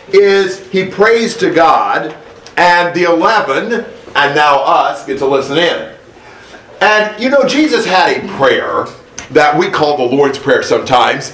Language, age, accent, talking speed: English, 40-59, American, 155 wpm